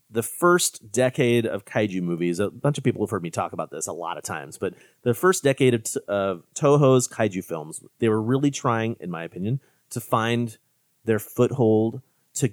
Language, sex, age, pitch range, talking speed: English, male, 30-49, 105-130 Hz, 195 wpm